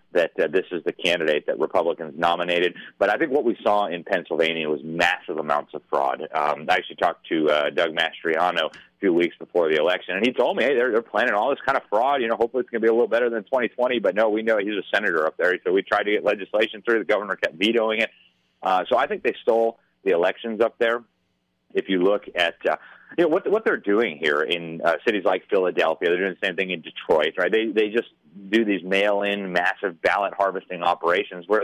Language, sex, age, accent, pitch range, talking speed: English, male, 30-49, American, 90-140 Hz, 240 wpm